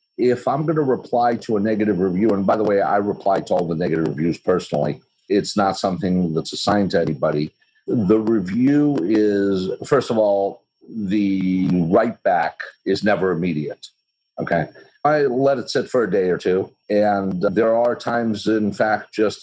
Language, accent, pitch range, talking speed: English, American, 100-125 Hz, 175 wpm